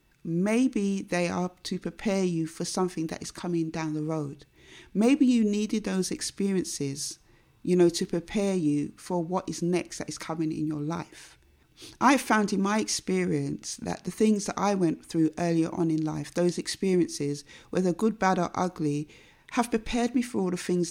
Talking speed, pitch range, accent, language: 185 wpm, 160-195 Hz, British, English